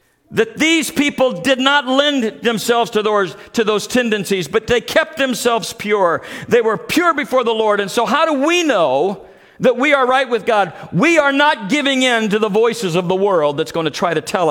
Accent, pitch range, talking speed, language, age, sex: American, 185-250 Hz, 215 wpm, English, 50-69, male